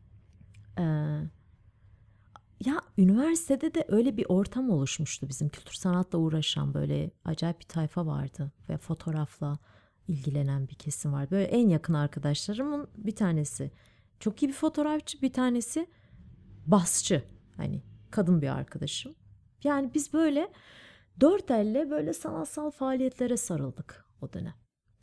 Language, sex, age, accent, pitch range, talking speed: Turkish, female, 30-49, native, 150-215 Hz, 120 wpm